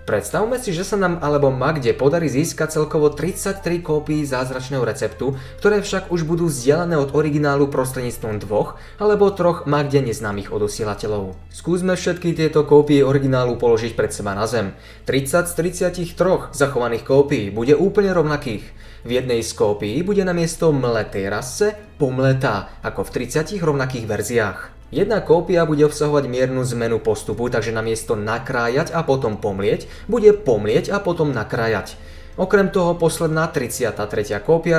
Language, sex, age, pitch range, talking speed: Slovak, male, 20-39, 120-170 Hz, 145 wpm